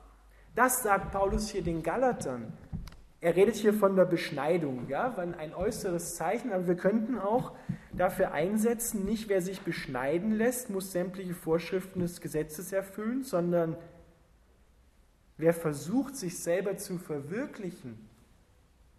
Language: German